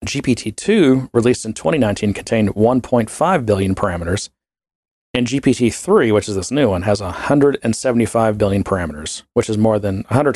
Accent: American